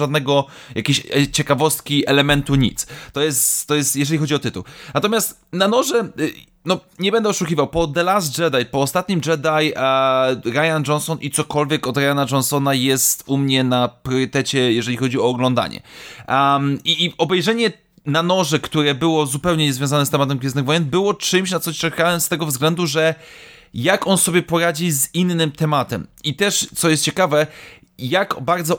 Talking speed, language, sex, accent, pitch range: 170 wpm, Polish, male, native, 140-170 Hz